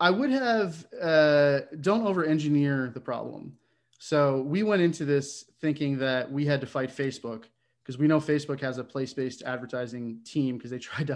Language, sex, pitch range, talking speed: English, male, 125-145 Hz, 175 wpm